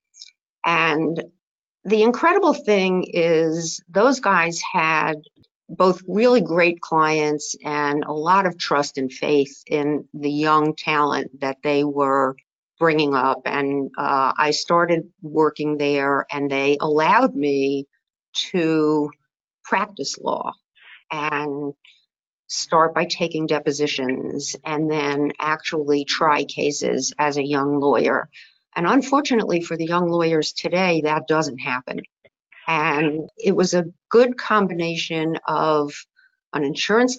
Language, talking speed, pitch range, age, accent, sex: English, 120 wpm, 150-175 Hz, 50-69, American, female